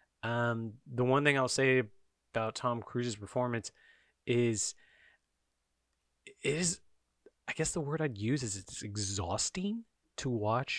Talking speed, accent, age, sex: 130 wpm, American, 30-49, male